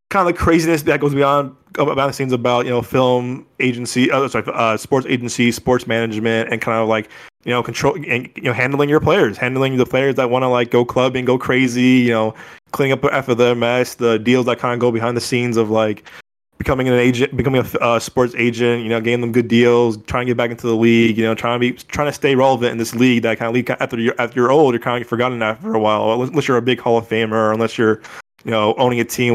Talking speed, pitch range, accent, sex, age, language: 260 wpm, 115-135 Hz, American, male, 20-39, English